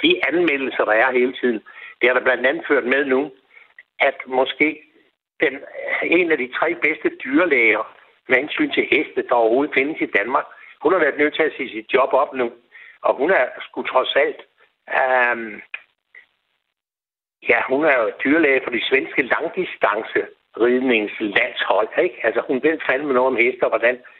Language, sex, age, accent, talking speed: Danish, male, 60-79, native, 175 wpm